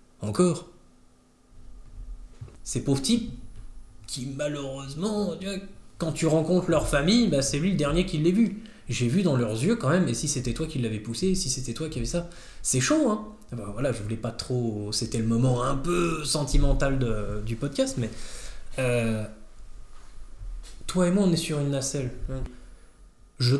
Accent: French